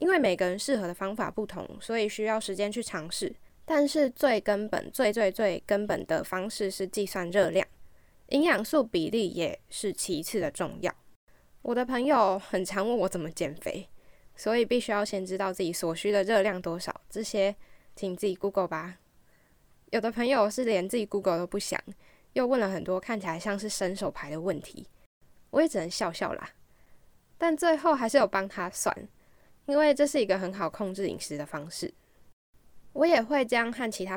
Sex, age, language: female, 10-29, Chinese